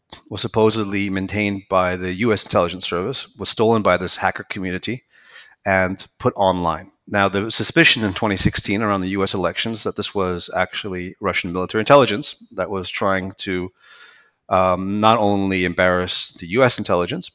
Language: English